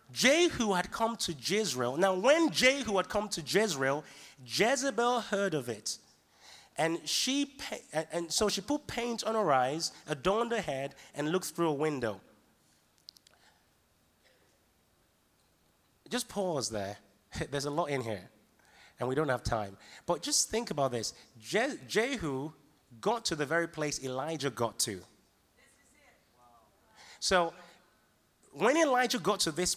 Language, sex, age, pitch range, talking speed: English, male, 30-49, 140-230 Hz, 135 wpm